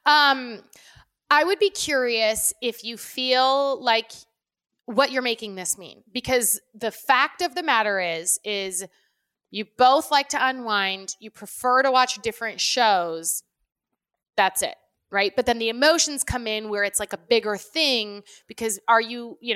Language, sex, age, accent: English, female, 20-39, American